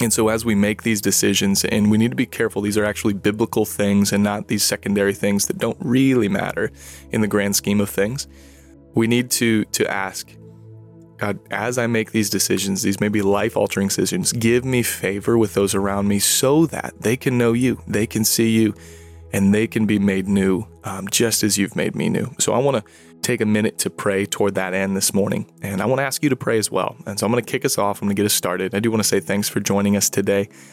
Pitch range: 100-110 Hz